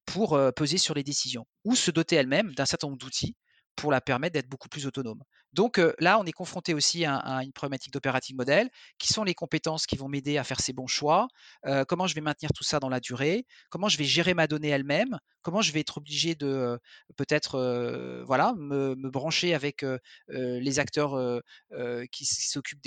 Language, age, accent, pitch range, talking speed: French, 40-59, French, 130-160 Hz, 220 wpm